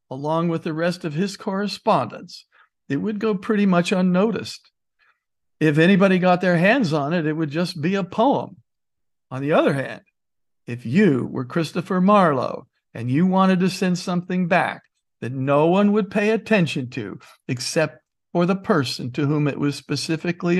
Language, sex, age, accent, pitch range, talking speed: English, male, 60-79, American, 145-185 Hz, 170 wpm